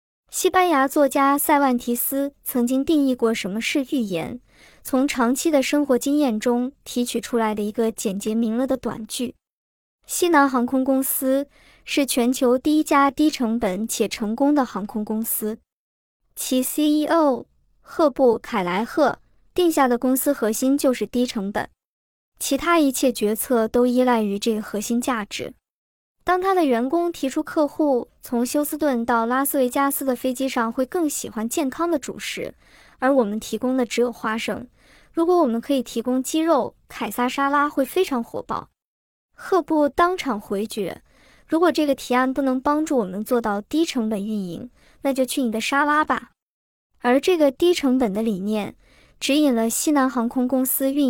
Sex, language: male, Chinese